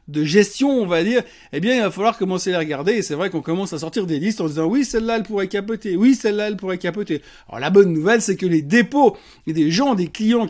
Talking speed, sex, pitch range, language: 270 wpm, male, 165-230 Hz, French